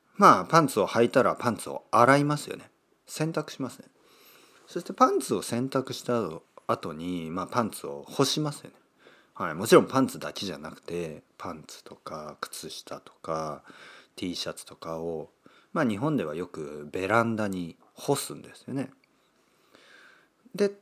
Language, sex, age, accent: Japanese, male, 40-59, native